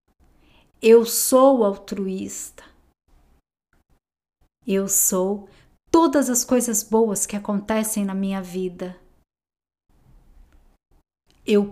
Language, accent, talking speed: Portuguese, Brazilian, 75 wpm